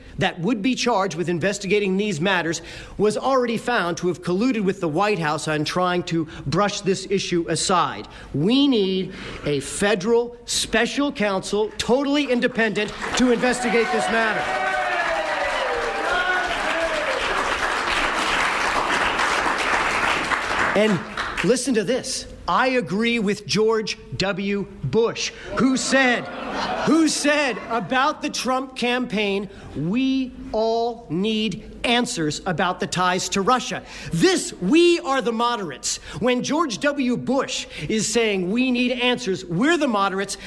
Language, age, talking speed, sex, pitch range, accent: English, 40-59, 120 wpm, male, 190-250 Hz, American